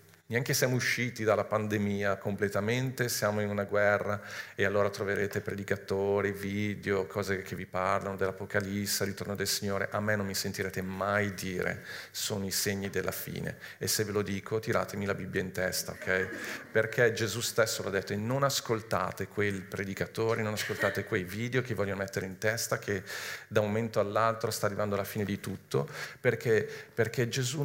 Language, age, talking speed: Italian, 40-59, 170 wpm